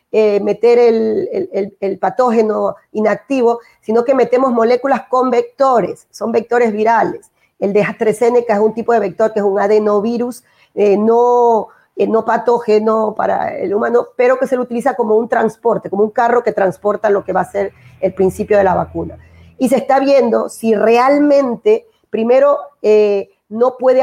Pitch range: 210-250 Hz